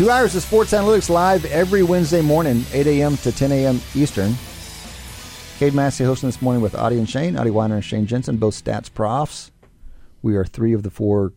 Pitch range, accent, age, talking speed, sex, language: 105-135 Hz, American, 40-59, 200 wpm, male, English